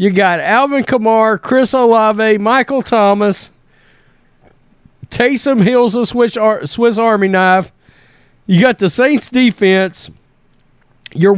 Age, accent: 40-59, American